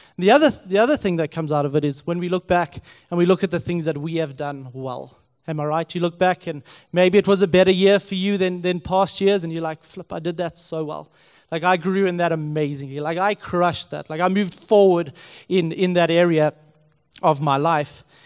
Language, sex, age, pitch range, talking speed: English, male, 20-39, 150-180 Hz, 245 wpm